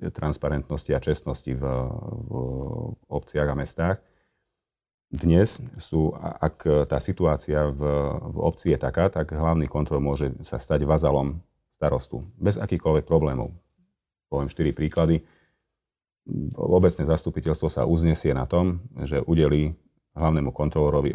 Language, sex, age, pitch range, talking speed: Slovak, male, 40-59, 75-80 Hz, 120 wpm